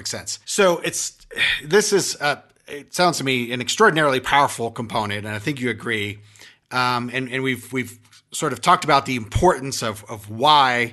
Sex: male